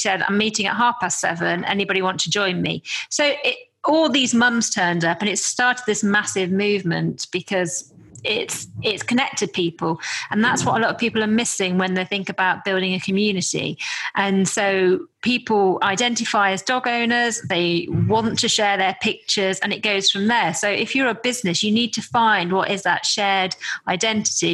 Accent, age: British, 30-49